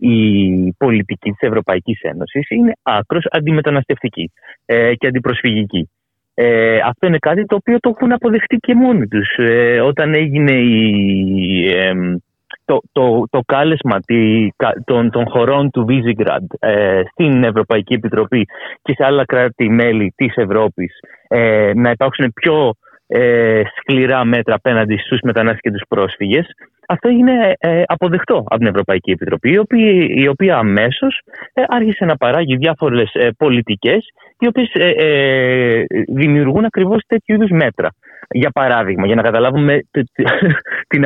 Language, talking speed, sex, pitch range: Greek, 130 wpm, male, 110-155 Hz